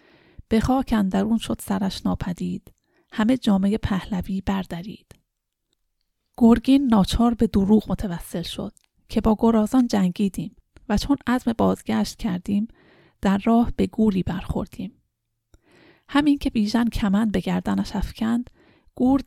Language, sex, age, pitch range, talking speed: Persian, female, 30-49, 200-235 Hz, 120 wpm